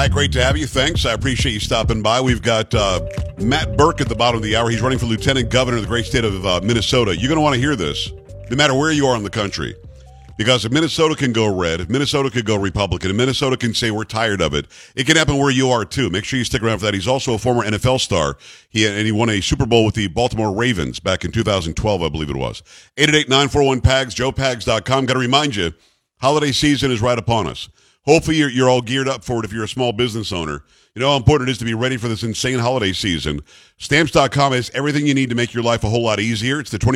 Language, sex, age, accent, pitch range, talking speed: English, male, 50-69, American, 105-135 Hz, 265 wpm